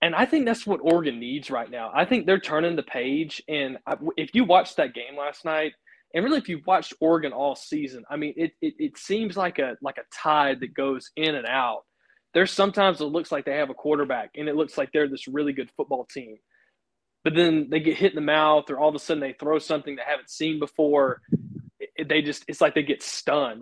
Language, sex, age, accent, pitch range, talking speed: English, male, 20-39, American, 140-160 Hz, 240 wpm